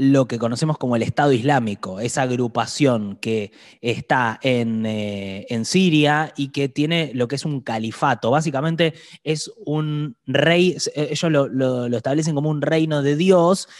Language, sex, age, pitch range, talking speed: Spanish, male, 20-39, 115-150 Hz, 150 wpm